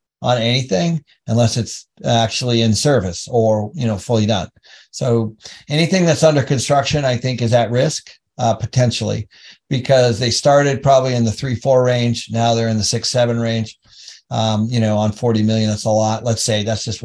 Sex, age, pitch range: male, 50-69, 115-135 Hz